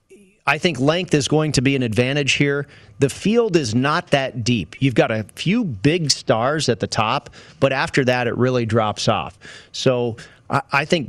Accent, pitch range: American, 115-140 Hz